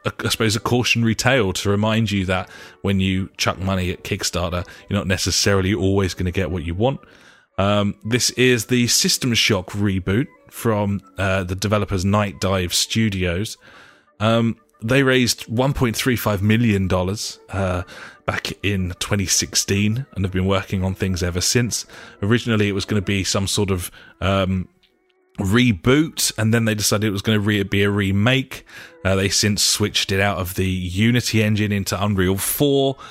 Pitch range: 100-115 Hz